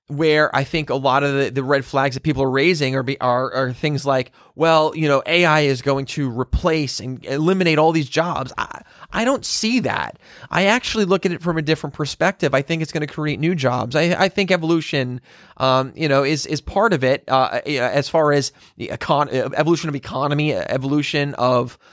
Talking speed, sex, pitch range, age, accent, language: 210 wpm, male, 130-160 Hz, 30-49, American, English